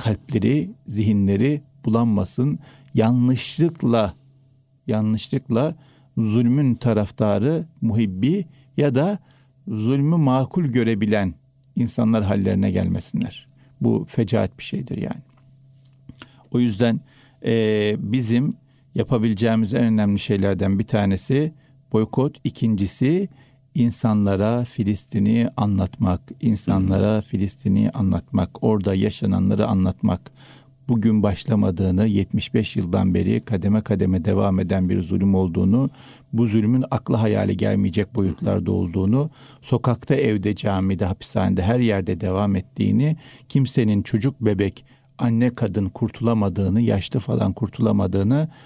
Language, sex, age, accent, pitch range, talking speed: Turkish, male, 50-69, native, 100-135 Hz, 95 wpm